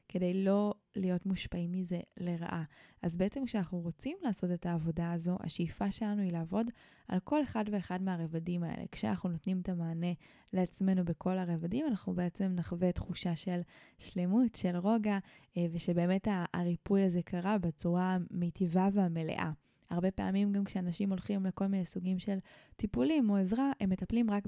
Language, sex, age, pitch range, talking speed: Hebrew, female, 20-39, 175-205 Hz, 145 wpm